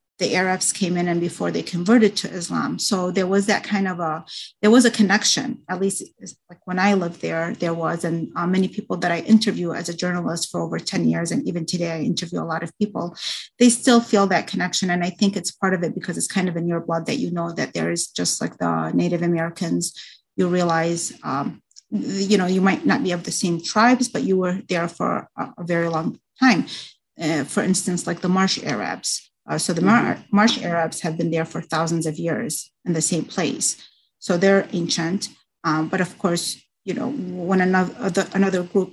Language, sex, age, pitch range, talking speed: English, female, 30-49, 170-200 Hz, 220 wpm